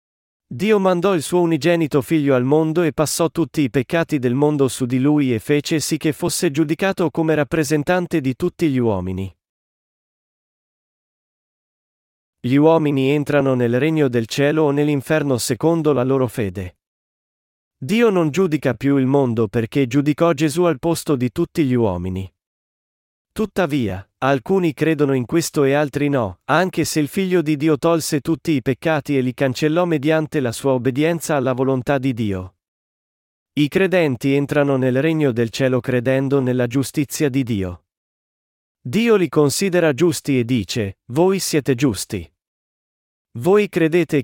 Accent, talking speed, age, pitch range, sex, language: native, 150 wpm, 40-59, 125-160 Hz, male, Italian